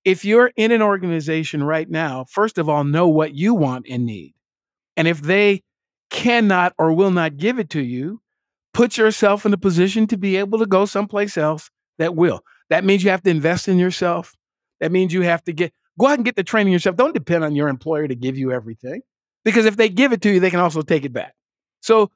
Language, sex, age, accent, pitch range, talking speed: English, male, 50-69, American, 160-225 Hz, 230 wpm